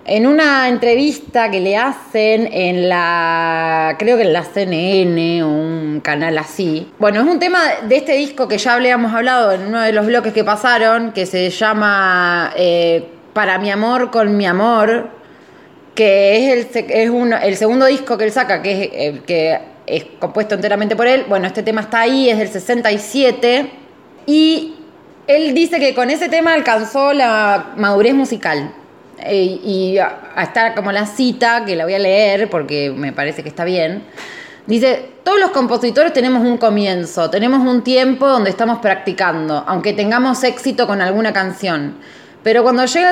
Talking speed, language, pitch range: 170 wpm, Spanish, 195-255 Hz